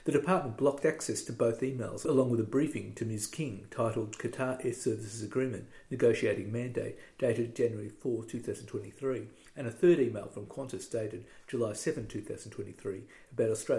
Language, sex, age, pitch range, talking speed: English, male, 50-69, 110-130 Hz, 150 wpm